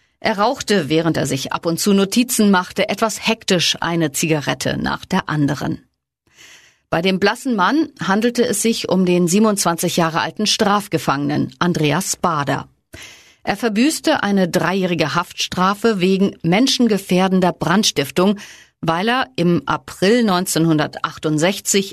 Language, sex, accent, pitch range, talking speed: German, female, German, 170-215 Hz, 125 wpm